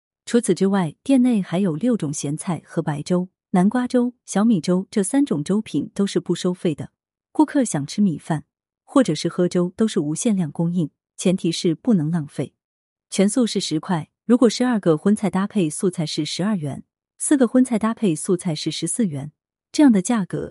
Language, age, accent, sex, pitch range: Chinese, 30-49, native, female, 165-225 Hz